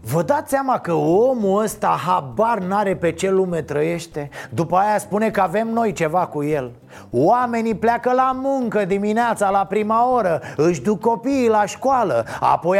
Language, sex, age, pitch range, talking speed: Romanian, male, 30-49, 165-235 Hz, 165 wpm